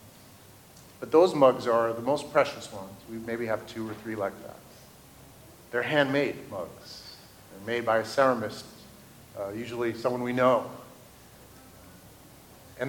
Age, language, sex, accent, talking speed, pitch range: 50-69, English, male, American, 140 wpm, 120-150 Hz